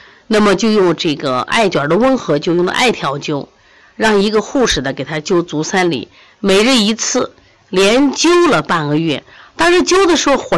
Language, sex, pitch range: Chinese, female, 165-265 Hz